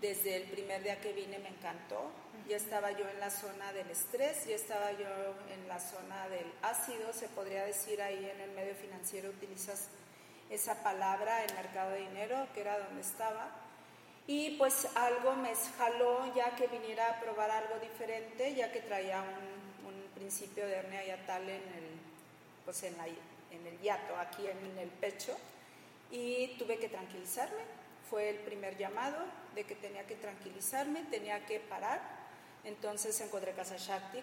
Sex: female